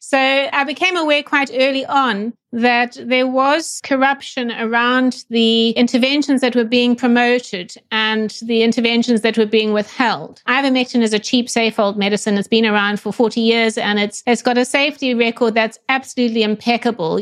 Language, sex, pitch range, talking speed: English, female, 210-240 Hz, 165 wpm